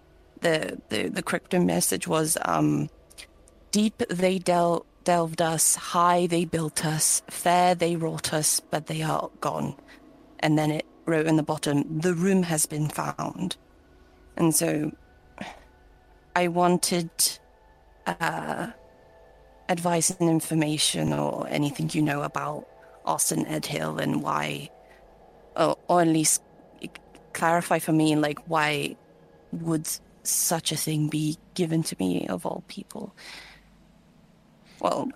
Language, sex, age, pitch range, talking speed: English, female, 30-49, 145-175 Hz, 130 wpm